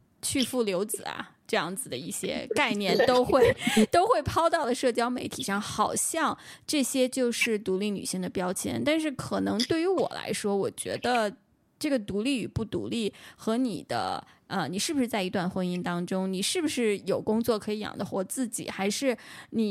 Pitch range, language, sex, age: 200-250 Hz, Chinese, female, 20-39